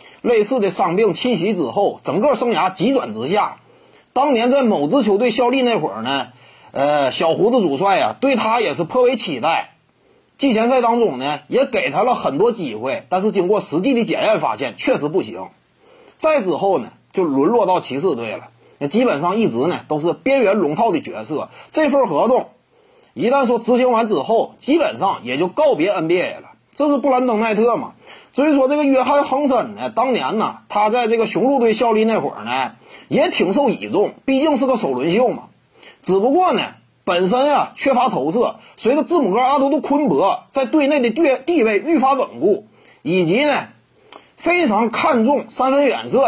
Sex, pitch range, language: male, 230-295 Hz, Chinese